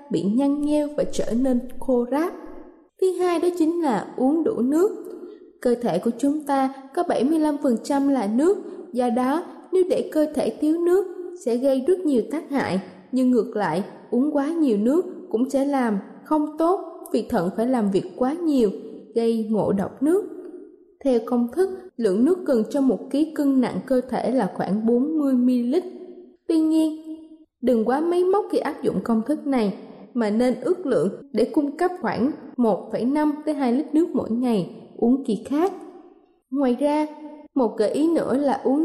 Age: 20-39